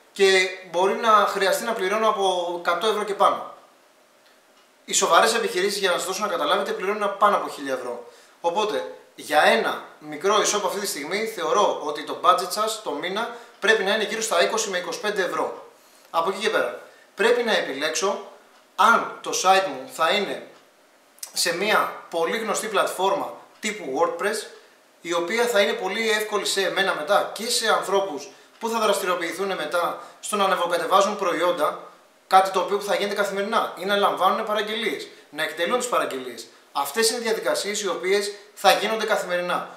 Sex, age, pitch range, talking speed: male, 30-49, 190-230 Hz, 170 wpm